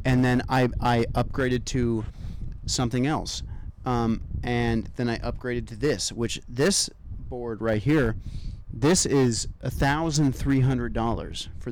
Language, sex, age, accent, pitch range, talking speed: English, male, 30-49, American, 110-140 Hz, 145 wpm